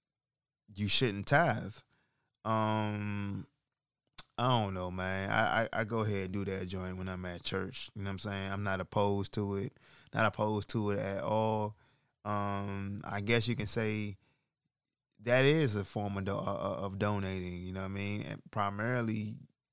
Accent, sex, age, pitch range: American, male, 20-39, 95-120 Hz